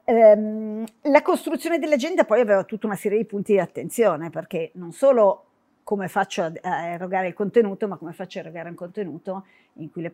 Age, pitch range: 50-69, 175-215 Hz